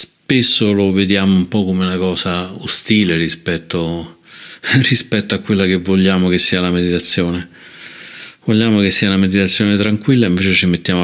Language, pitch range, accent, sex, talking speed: Italian, 90-105 Hz, native, male, 150 wpm